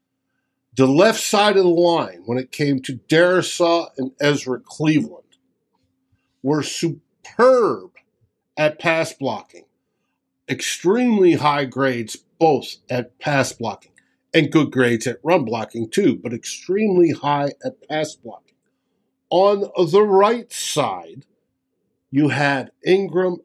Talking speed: 120 wpm